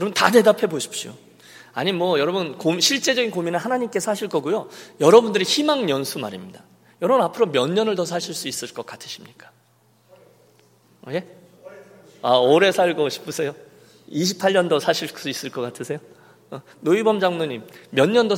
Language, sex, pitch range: Korean, male, 140-225 Hz